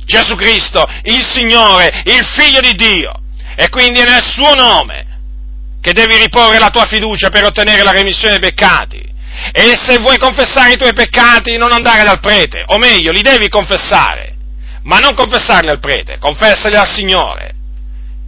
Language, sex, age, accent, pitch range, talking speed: Italian, male, 40-59, native, 155-240 Hz, 165 wpm